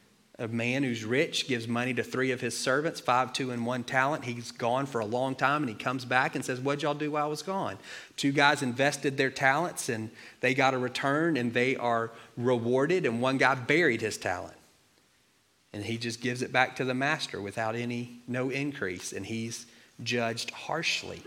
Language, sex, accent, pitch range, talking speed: English, male, American, 120-135 Hz, 205 wpm